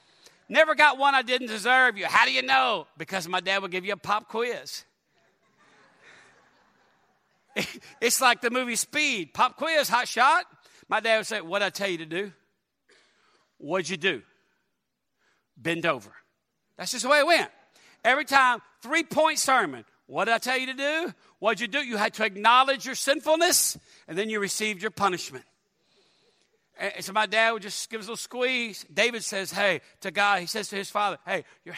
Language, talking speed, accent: English, 195 wpm, American